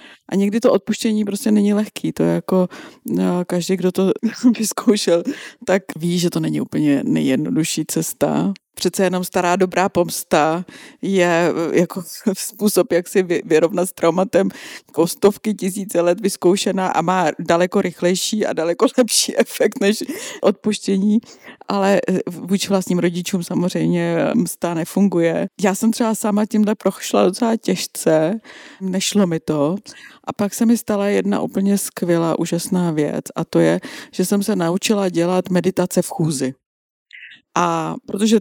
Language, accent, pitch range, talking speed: Czech, native, 165-200 Hz, 140 wpm